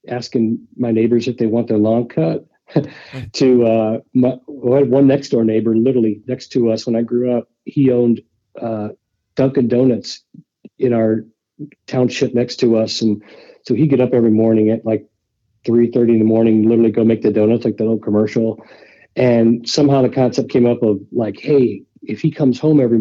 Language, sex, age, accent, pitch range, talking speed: English, male, 50-69, American, 110-130 Hz, 195 wpm